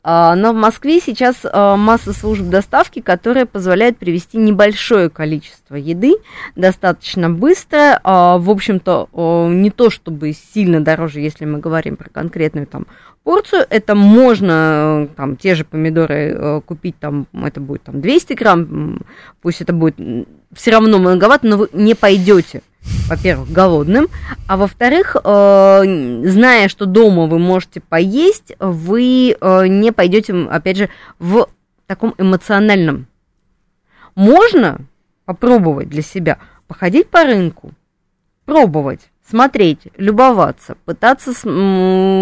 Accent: native